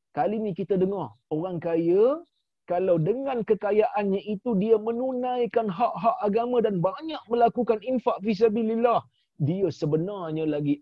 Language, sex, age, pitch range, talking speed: Malayalam, male, 40-59, 165-255 Hz, 120 wpm